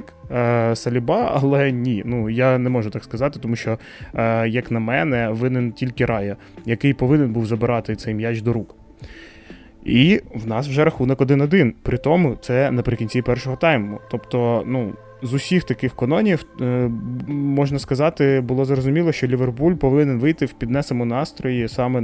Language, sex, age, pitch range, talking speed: Ukrainian, male, 20-39, 120-145 Hz, 150 wpm